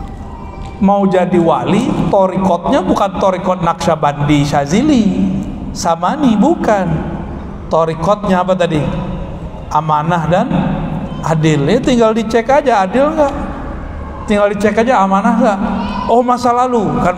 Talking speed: 105 wpm